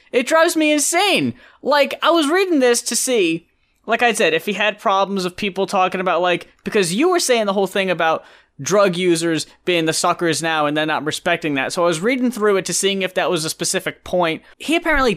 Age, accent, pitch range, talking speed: 20-39, American, 160-195 Hz, 230 wpm